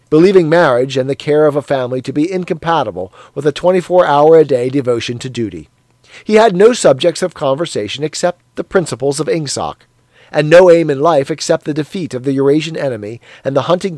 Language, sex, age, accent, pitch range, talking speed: English, male, 40-59, American, 125-165 Hz, 185 wpm